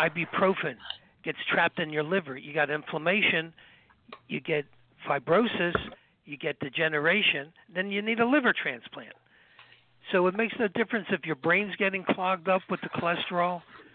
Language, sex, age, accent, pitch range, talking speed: English, male, 60-79, American, 155-185 Hz, 150 wpm